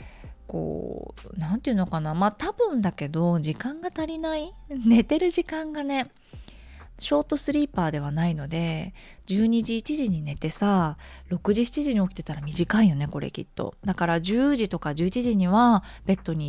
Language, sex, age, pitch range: Japanese, female, 20-39, 155-255 Hz